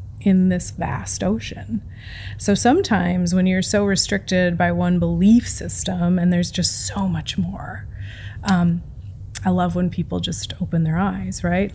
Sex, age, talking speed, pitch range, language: female, 20-39, 155 wpm, 175-215 Hz, English